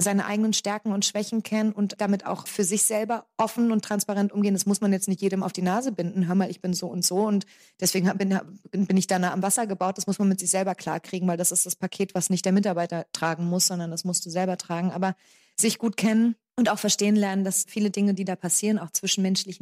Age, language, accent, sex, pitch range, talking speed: 20-39, German, German, female, 185-210 Hz, 255 wpm